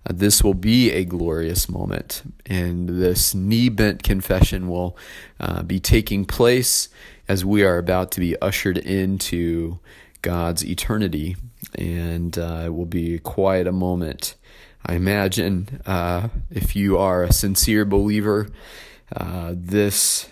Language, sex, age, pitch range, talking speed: English, male, 30-49, 90-100 Hz, 130 wpm